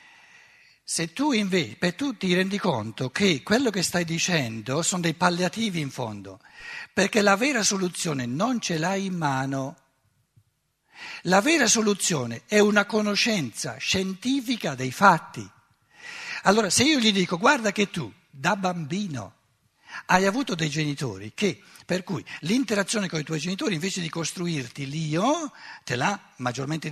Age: 60-79